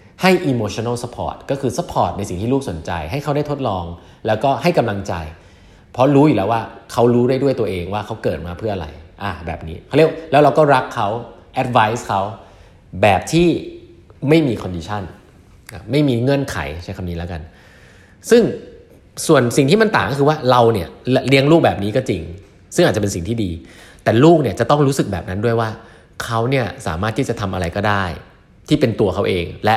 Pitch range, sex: 95-125 Hz, male